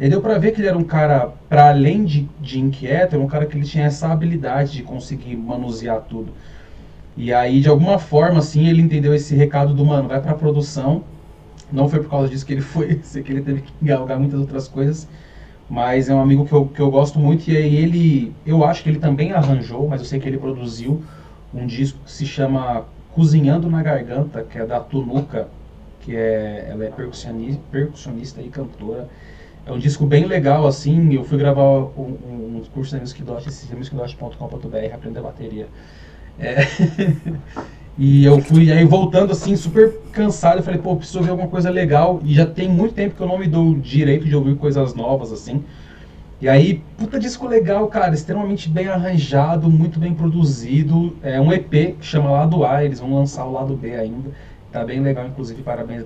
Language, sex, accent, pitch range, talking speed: Portuguese, male, Brazilian, 130-160 Hz, 200 wpm